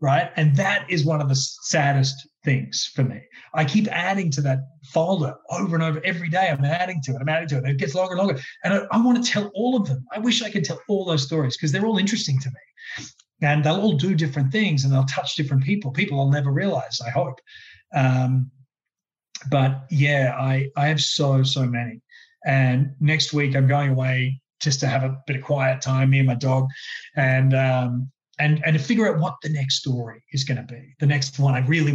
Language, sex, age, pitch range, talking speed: English, male, 30-49, 135-190 Hz, 225 wpm